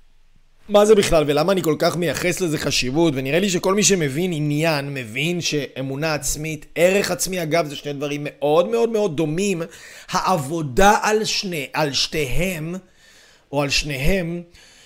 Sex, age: male, 30-49